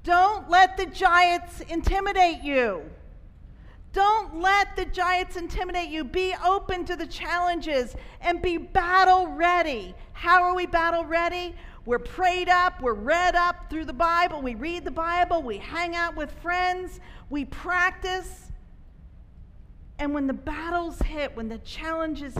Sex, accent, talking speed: female, American, 145 wpm